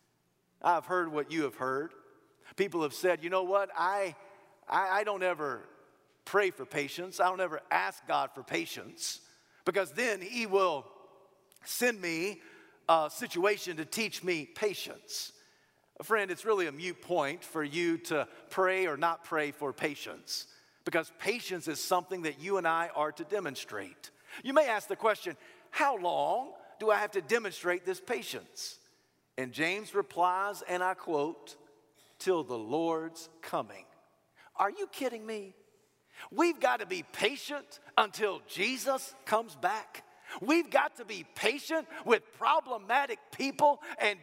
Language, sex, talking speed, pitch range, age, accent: English, male, 150 wpm, 185-295 Hz, 50-69, American